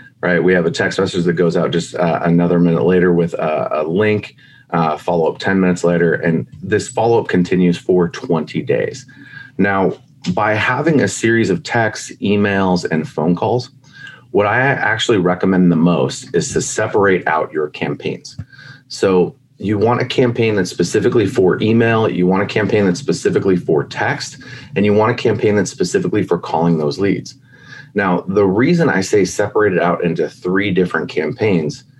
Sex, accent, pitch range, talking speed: male, American, 90-125 Hz, 175 wpm